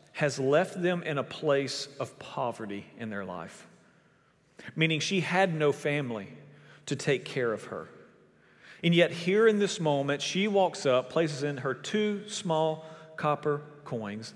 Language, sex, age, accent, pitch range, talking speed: English, male, 40-59, American, 130-170 Hz, 155 wpm